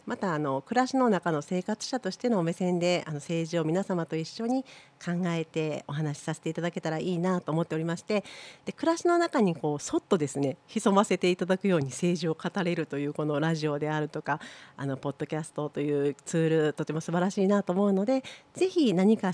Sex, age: female, 40-59